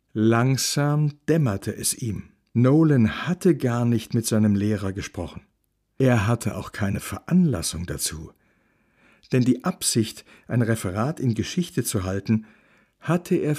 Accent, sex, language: German, male, German